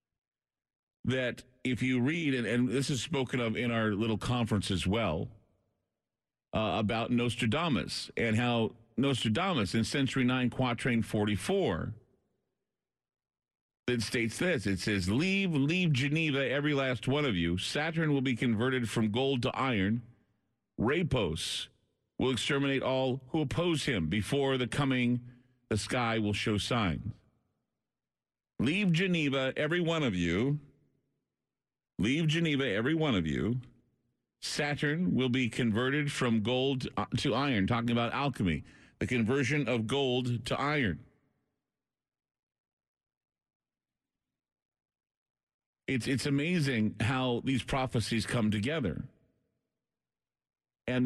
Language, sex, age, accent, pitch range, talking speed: English, male, 50-69, American, 115-135 Hz, 120 wpm